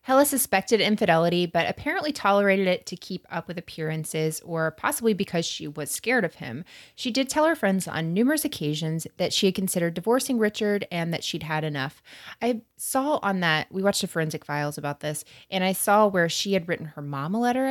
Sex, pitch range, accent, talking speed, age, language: female, 150-200 Hz, American, 205 wpm, 20-39, English